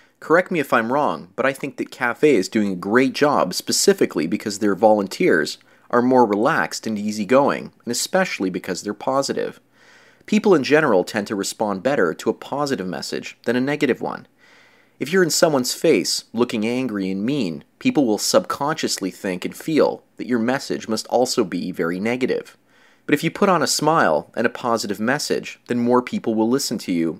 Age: 30-49